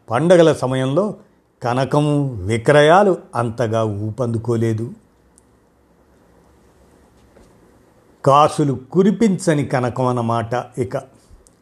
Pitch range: 120-160 Hz